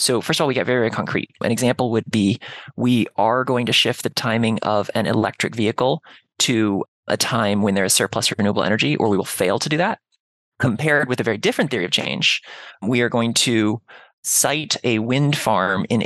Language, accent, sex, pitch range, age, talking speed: English, American, male, 115-155 Hz, 20-39, 215 wpm